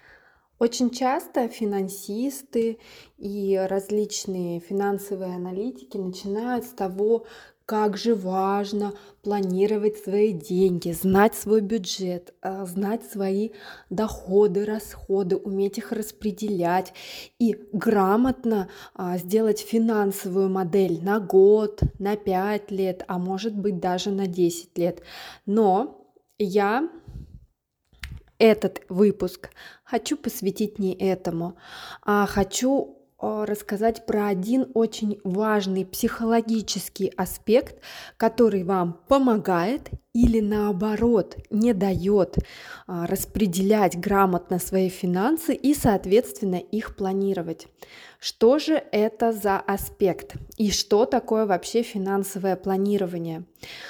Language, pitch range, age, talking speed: Russian, 190-225 Hz, 20-39, 95 wpm